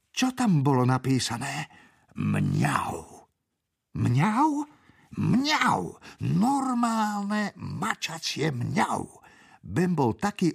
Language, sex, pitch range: Slovak, male, 115-160 Hz